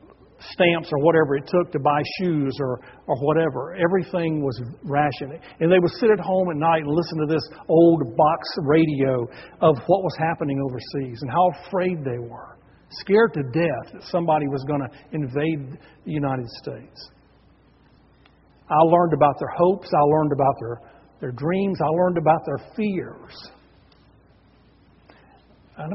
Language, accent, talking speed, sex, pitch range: English, American, 155 wpm, male, 140-180 Hz